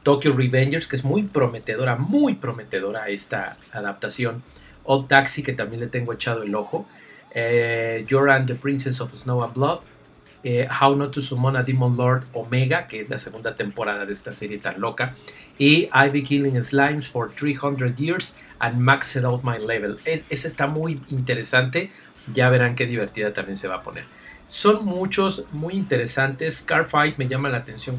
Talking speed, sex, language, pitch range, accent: 175 wpm, male, Spanish, 115-140 Hz, Mexican